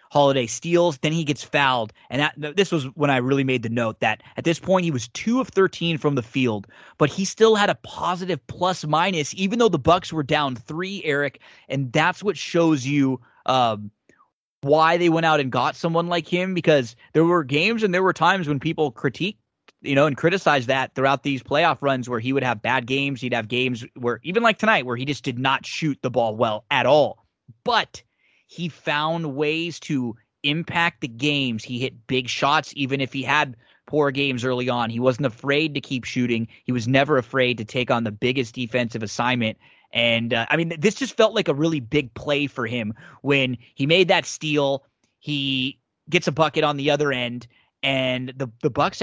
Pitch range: 125-165 Hz